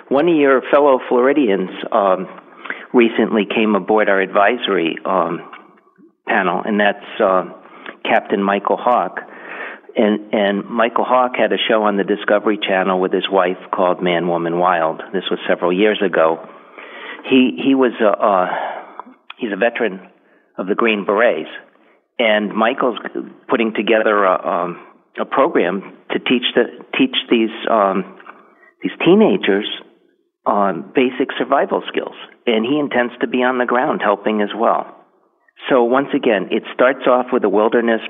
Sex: male